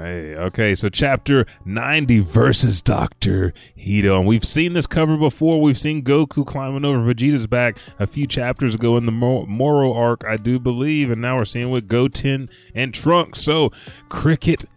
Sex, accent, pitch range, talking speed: male, American, 105-140 Hz, 170 wpm